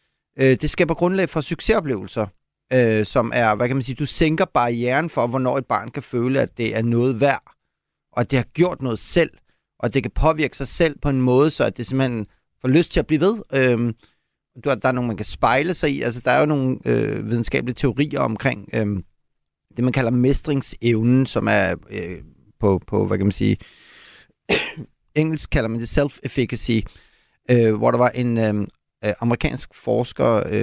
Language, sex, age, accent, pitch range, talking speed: Danish, male, 30-49, native, 120-155 Hz, 180 wpm